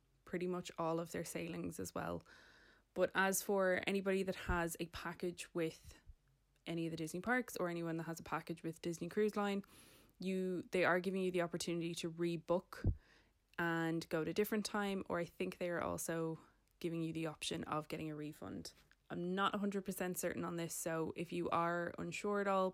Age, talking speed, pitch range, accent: 20-39, 195 wpm, 165-185 Hz, Irish